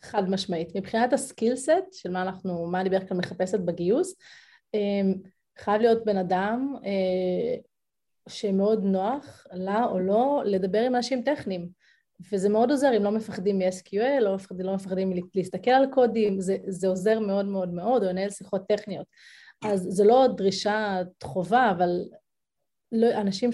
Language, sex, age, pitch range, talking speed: Hebrew, female, 30-49, 190-235 Hz, 160 wpm